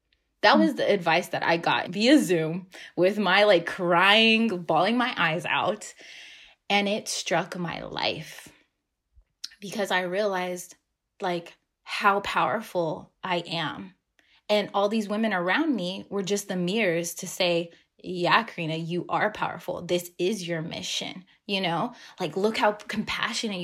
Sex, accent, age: female, American, 20-39